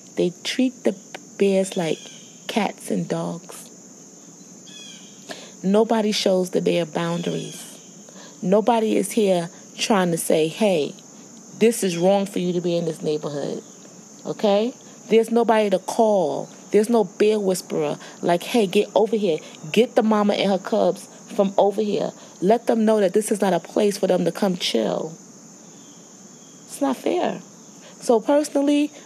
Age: 30-49